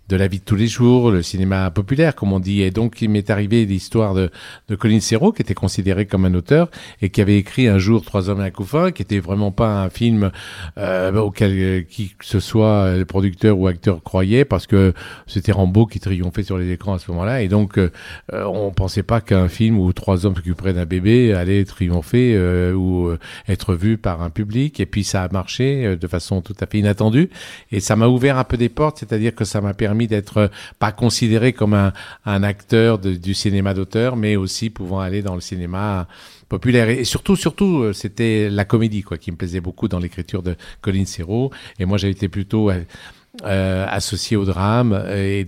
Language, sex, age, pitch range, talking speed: French, male, 50-69, 95-115 Hz, 220 wpm